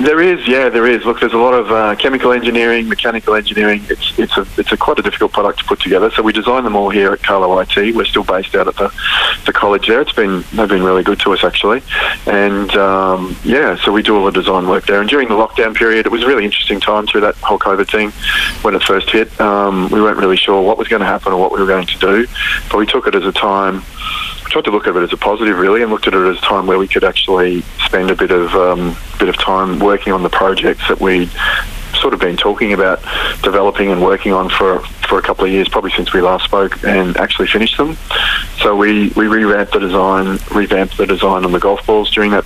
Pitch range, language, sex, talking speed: 95-110 Hz, English, male, 255 wpm